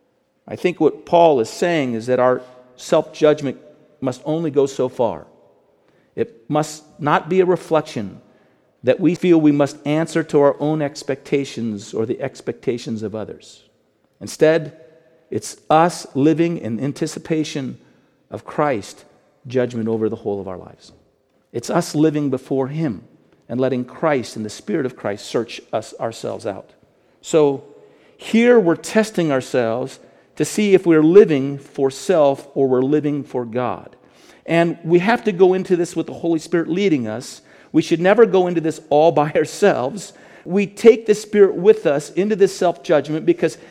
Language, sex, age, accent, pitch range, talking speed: English, male, 50-69, American, 130-180 Hz, 160 wpm